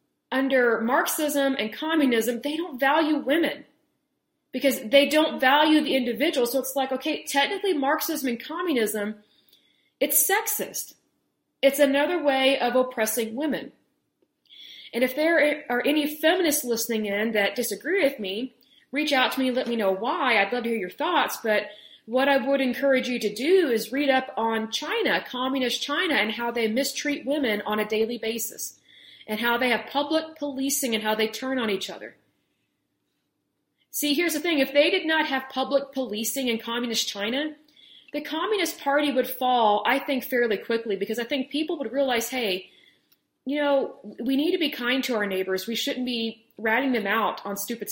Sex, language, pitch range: female, Hindi, 230-295 Hz